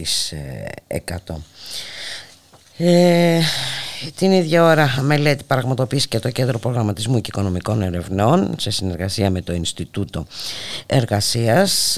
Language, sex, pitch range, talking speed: Greek, female, 95-135 Hz, 100 wpm